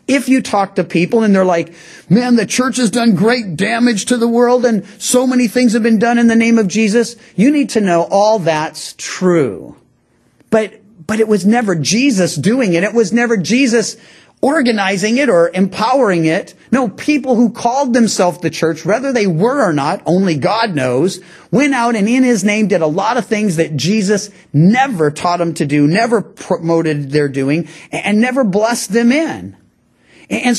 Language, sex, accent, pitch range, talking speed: English, male, American, 170-235 Hz, 190 wpm